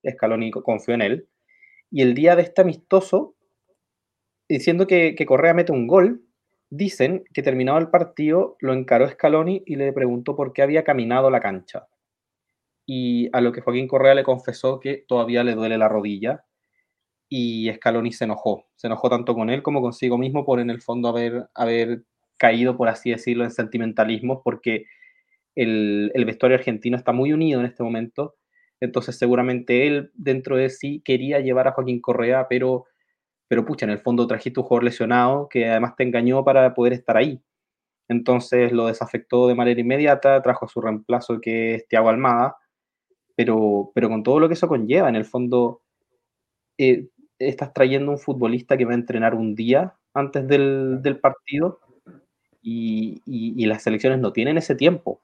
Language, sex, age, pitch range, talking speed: Spanish, male, 20-39, 120-140 Hz, 175 wpm